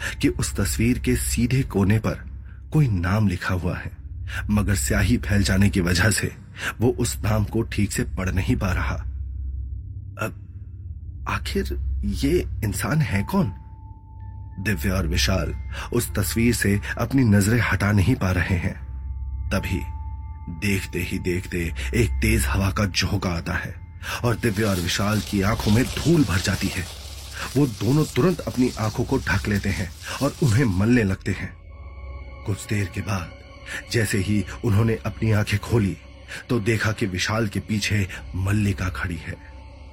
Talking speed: 155 wpm